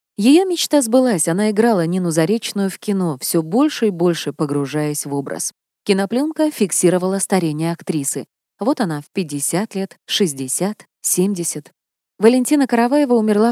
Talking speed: 135 wpm